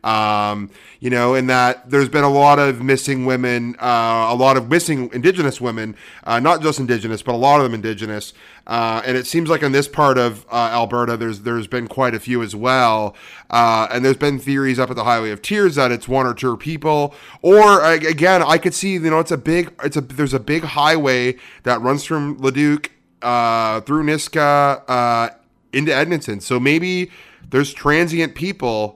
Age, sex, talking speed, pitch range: 30-49, male, 200 wpm, 120-145 Hz